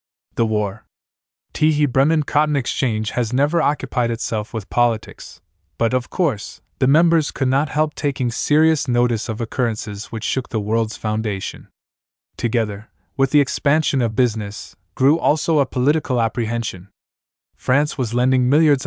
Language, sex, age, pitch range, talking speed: English, male, 20-39, 110-135 Hz, 145 wpm